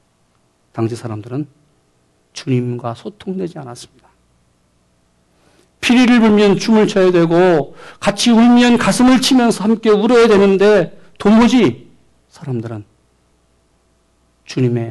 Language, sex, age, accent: Korean, male, 40-59, native